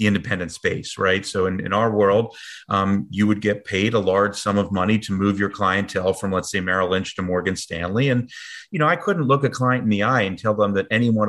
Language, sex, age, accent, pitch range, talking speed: English, male, 30-49, American, 100-120 Hz, 250 wpm